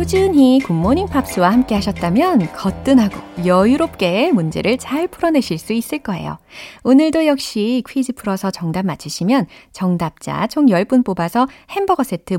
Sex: female